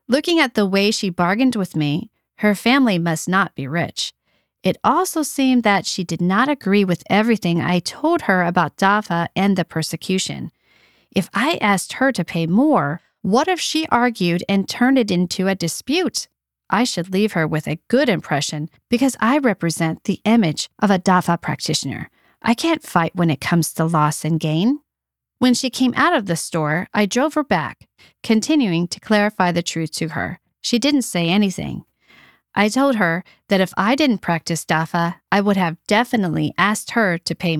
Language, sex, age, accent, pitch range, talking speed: English, female, 40-59, American, 170-230 Hz, 185 wpm